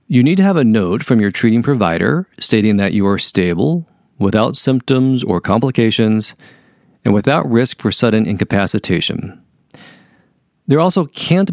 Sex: male